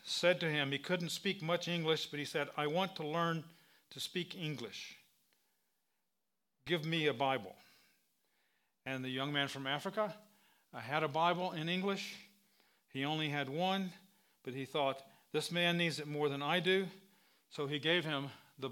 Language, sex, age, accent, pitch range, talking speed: English, male, 40-59, American, 145-175 Hz, 170 wpm